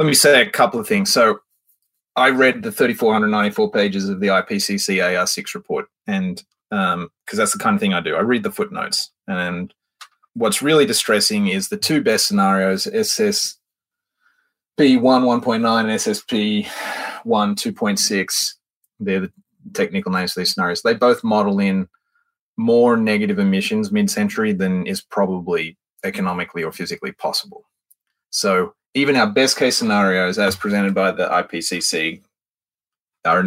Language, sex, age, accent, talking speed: English, male, 30-49, Australian, 145 wpm